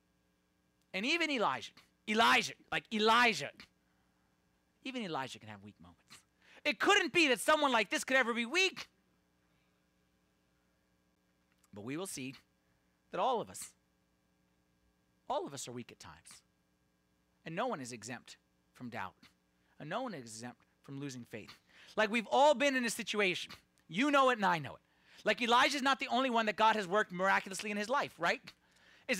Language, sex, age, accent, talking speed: English, male, 40-59, American, 170 wpm